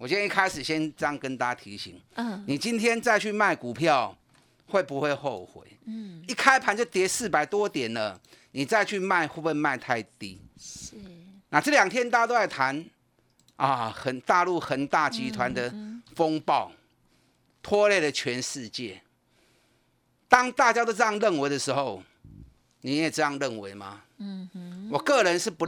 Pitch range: 130-205 Hz